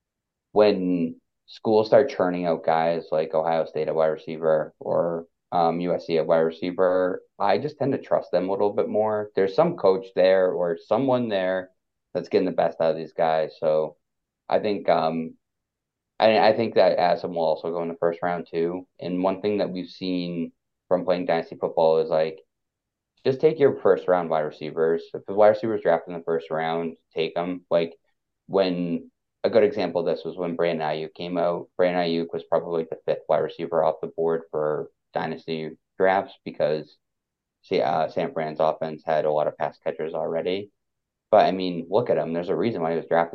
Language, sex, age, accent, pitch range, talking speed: English, male, 20-39, American, 80-90 Hz, 195 wpm